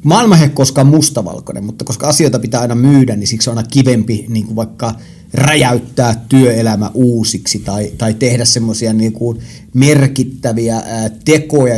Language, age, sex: Finnish, 30-49, male